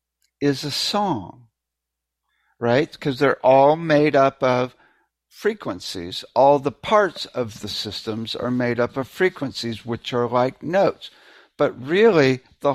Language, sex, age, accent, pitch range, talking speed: English, male, 60-79, American, 115-145 Hz, 135 wpm